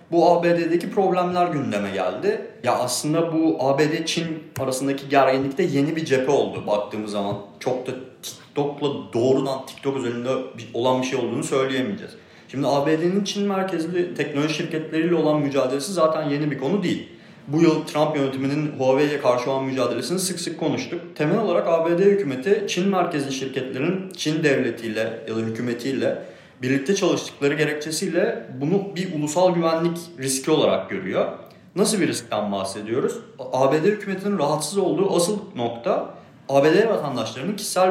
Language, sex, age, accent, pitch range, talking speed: Turkish, male, 40-59, native, 135-180 Hz, 140 wpm